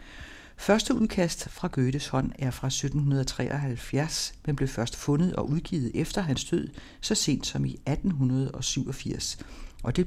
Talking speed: 145 wpm